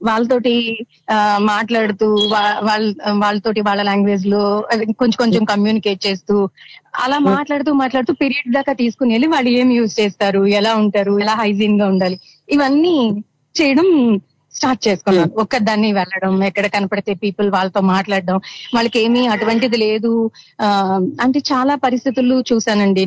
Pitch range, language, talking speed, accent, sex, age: 200-235 Hz, Telugu, 130 wpm, native, female, 30-49